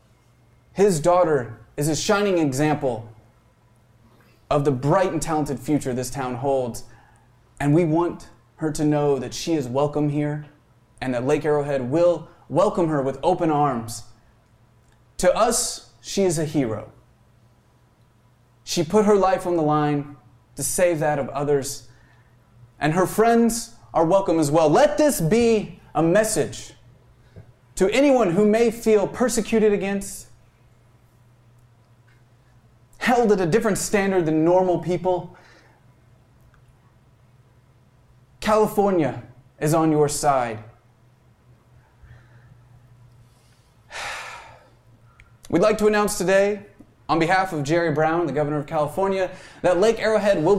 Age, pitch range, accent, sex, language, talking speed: 30-49, 120-175 Hz, American, male, English, 125 wpm